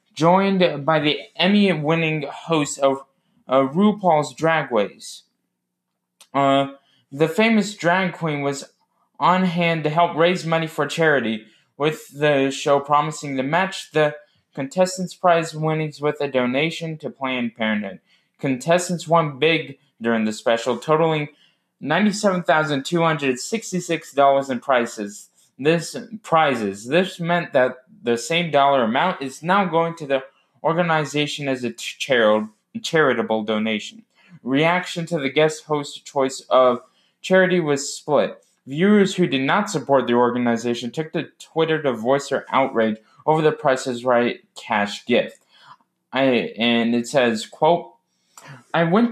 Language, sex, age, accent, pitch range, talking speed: English, male, 20-39, American, 130-170 Hz, 130 wpm